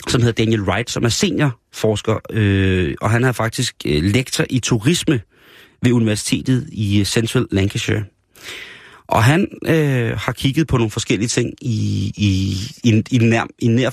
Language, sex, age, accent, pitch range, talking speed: Danish, male, 30-49, native, 100-130 Hz, 165 wpm